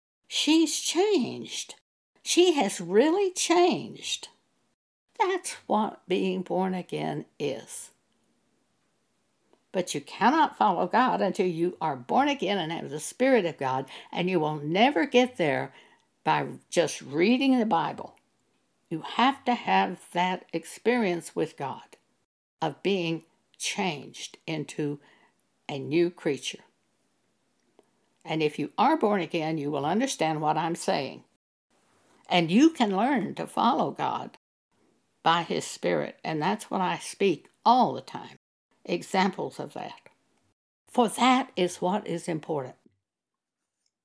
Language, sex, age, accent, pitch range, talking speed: English, female, 60-79, American, 165-250 Hz, 125 wpm